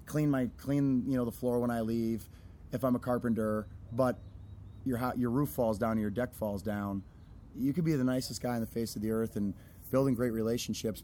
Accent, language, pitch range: American, English, 105-125 Hz